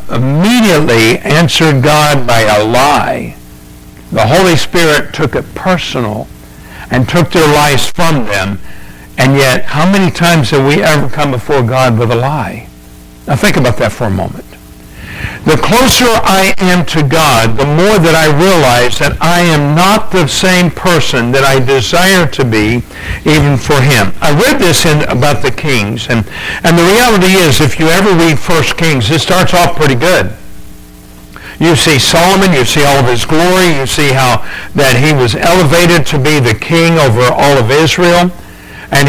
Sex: male